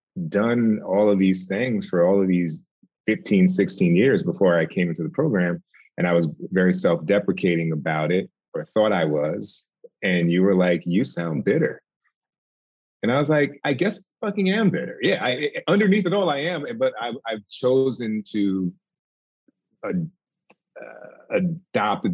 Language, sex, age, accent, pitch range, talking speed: English, male, 30-49, American, 90-115 Hz, 165 wpm